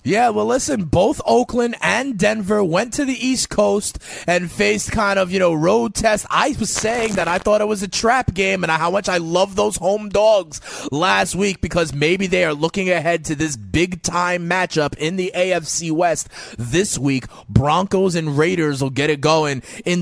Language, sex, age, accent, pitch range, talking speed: English, male, 30-49, American, 150-190 Hz, 200 wpm